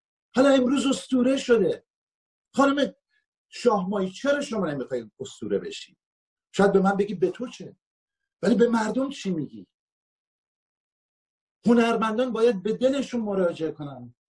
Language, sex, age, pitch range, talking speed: Persian, male, 50-69, 170-245 Hz, 125 wpm